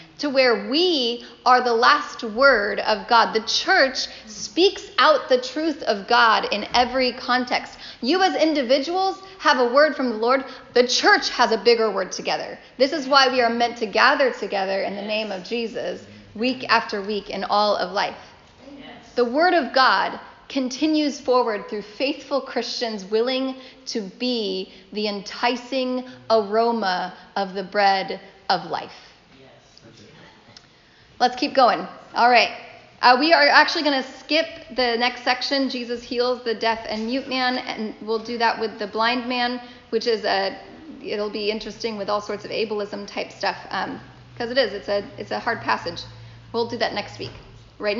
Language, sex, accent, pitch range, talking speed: English, female, American, 210-265 Hz, 170 wpm